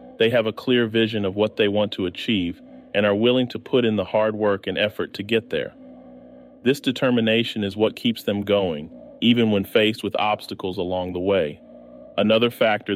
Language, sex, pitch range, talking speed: English, male, 100-125 Hz, 195 wpm